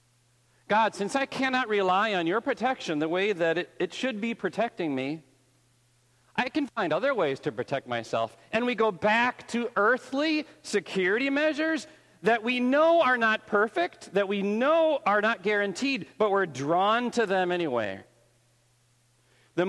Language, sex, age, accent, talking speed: English, male, 40-59, American, 160 wpm